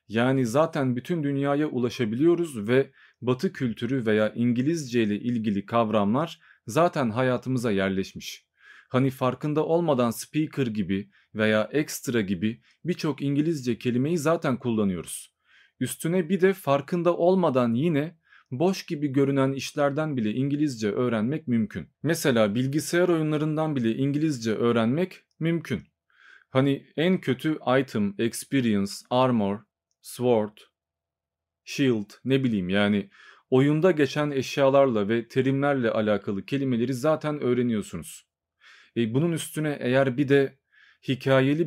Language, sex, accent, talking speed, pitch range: Turkish, male, native, 110 wpm, 115-150 Hz